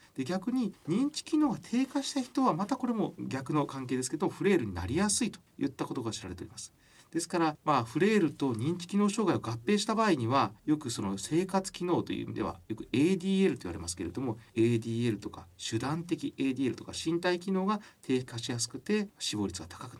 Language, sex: Japanese, male